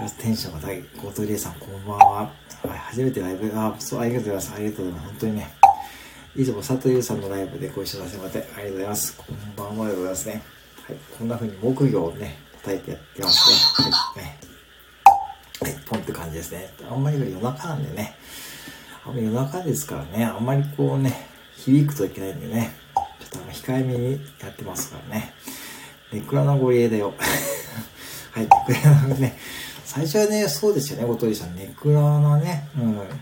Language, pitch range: Japanese, 100-140 Hz